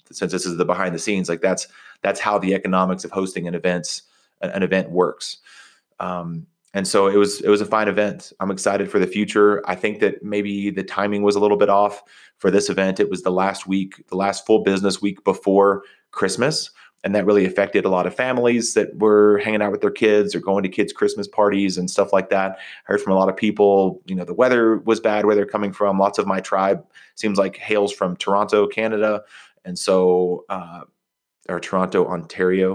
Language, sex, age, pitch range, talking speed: English, male, 30-49, 95-105 Hz, 220 wpm